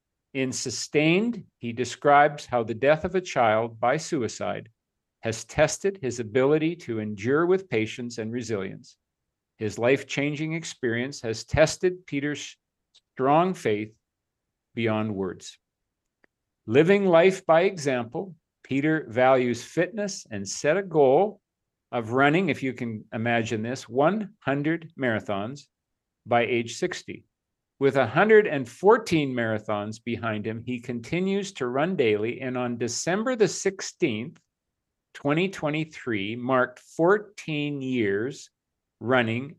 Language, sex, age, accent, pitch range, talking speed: English, male, 50-69, American, 115-160 Hz, 115 wpm